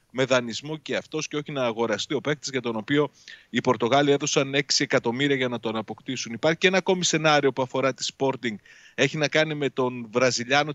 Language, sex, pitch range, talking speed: Greek, male, 115-150 Hz, 205 wpm